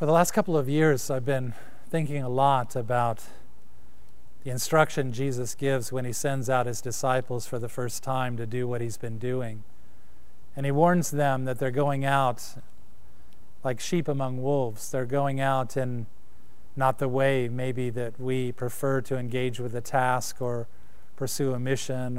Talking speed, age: 175 wpm, 40-59